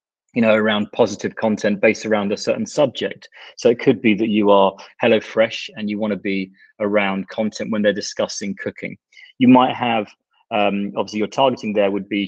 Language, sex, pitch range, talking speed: Danish, male, 100-120 Hz, 195 wpm